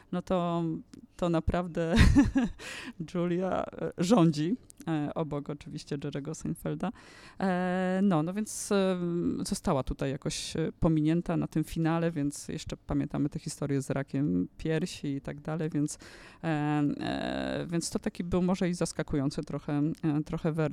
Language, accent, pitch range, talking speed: Polish, native, 150-180 Hz, 120 wpm